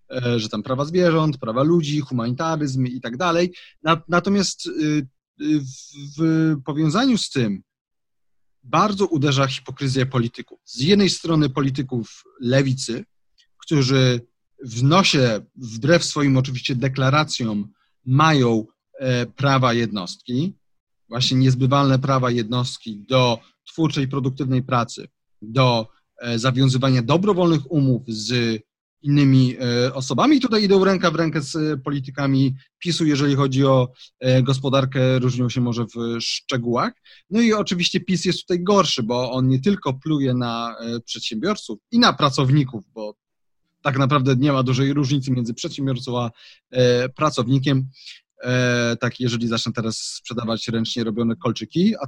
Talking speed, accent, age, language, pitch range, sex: 120 wpm, native, 30-49, Polish, 120-155 Hz, male